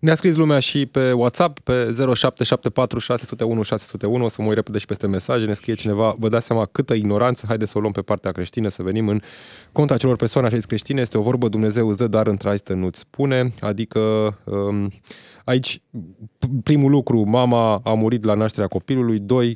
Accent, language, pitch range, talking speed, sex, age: native, Romanian, 105-125 Hz, 180 wpm, male, 20-39